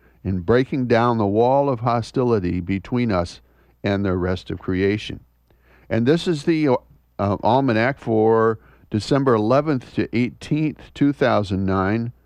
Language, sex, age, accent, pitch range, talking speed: English, male, 50-69, American, 85-135 Hz, 125 wpm